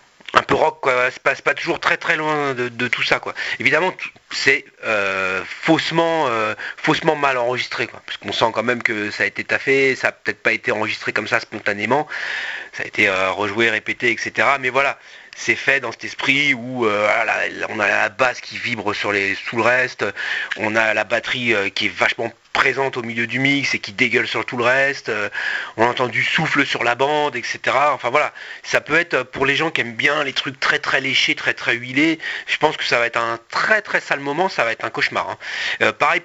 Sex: male